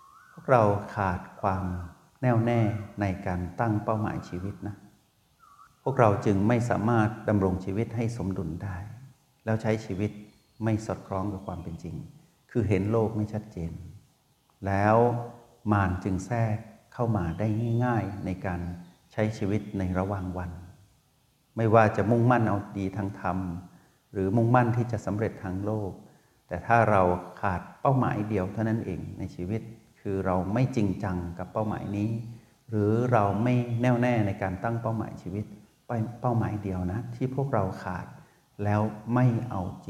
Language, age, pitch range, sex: Thai, 60-79, 95-115 Hz, male